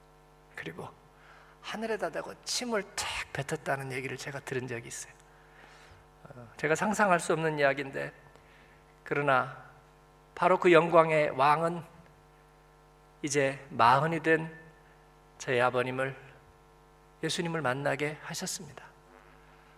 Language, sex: Korean, male